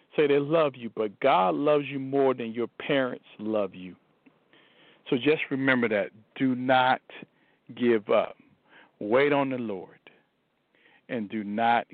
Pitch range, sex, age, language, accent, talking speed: 110-135 Hz, male, 50-69, English, American, 145 wpm